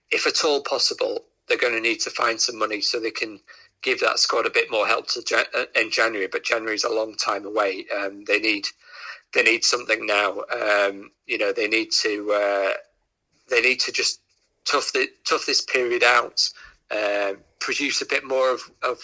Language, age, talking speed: English, 40-59, 200 wpm